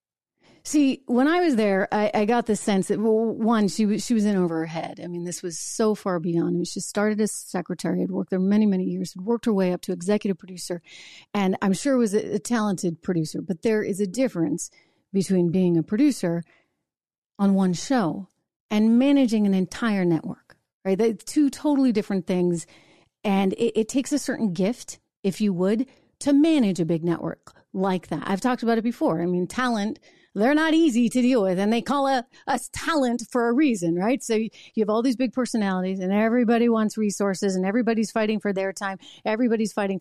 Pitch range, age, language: 185-235 Hz, 40-59, English